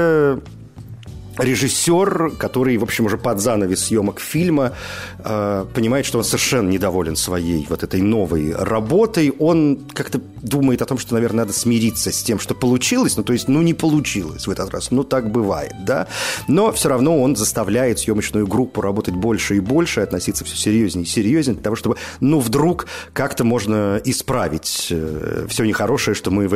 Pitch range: 100-130 Hz